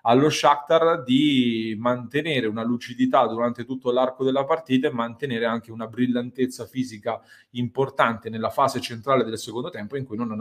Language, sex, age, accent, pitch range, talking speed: Italian, male, 30-49, native, 110-130 Hz, 155 wpm